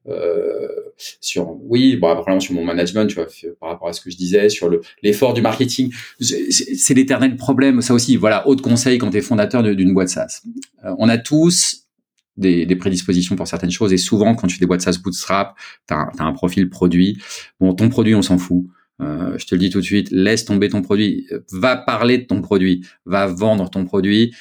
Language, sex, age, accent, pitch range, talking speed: French, male, 30-49, French, 95-130 Hz, 220 wpm